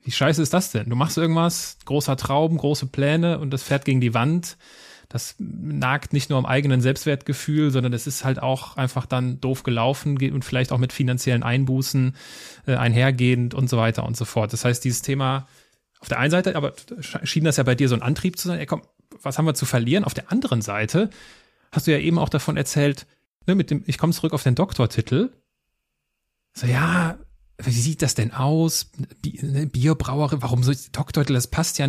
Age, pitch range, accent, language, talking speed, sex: 30-49, 130-165 Hz, German, German, 205 wpm, male